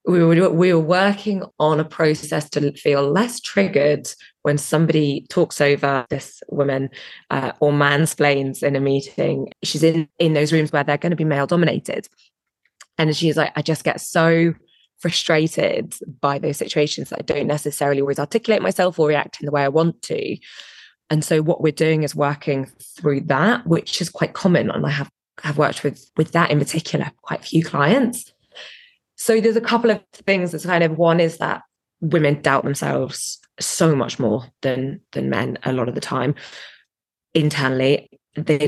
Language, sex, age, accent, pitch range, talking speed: English, female, 20-39, British, 140-165 Hz, 180 wpm